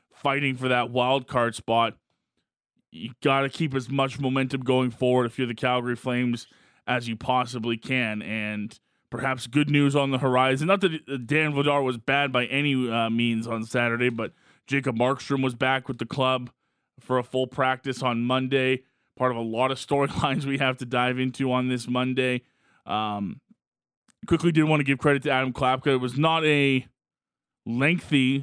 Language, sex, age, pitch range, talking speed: English, male, 20-39, 120-135 Hz, 180 wpm